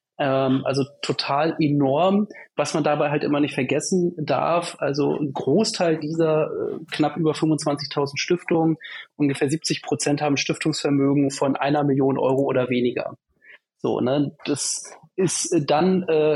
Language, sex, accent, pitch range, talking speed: German, male, German, 140-165 Hz, 130 wpm